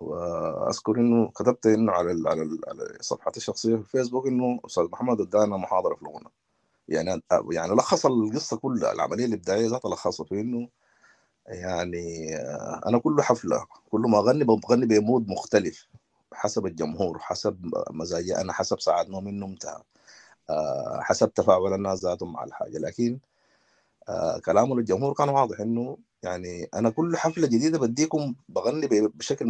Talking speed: 130 wpm